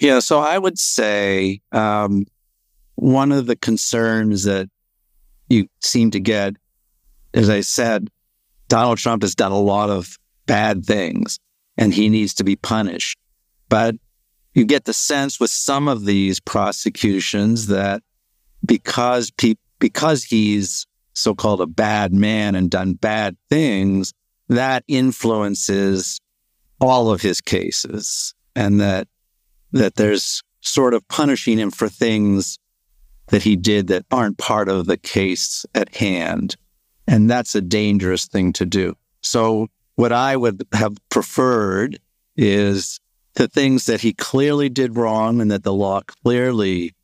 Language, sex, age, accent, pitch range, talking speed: English, male, 50-69, American, 100-120 Hz, 140 wpm